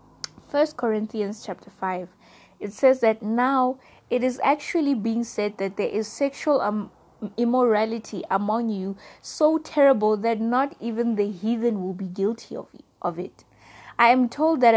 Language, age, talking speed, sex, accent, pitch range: English, 20-39, 150 wpm, female, South African, 200-250 Hz